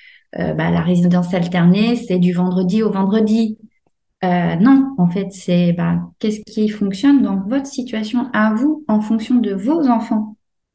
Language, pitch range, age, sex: French, 175-215 Hz, 30-49, female